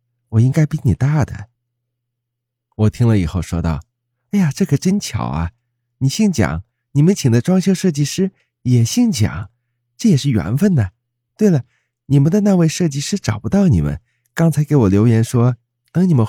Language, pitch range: Chinese, 105-140 Hz